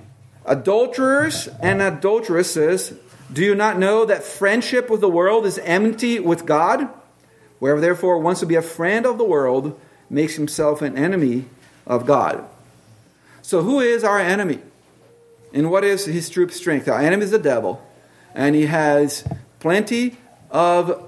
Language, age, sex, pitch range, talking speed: English, 40-59, male, 135-195 Hz, 150 wpm